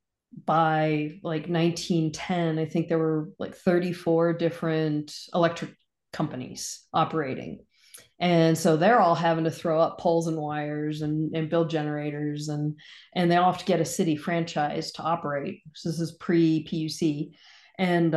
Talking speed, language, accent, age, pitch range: 150 wpm, English, American, 40-59, 155-185 Hz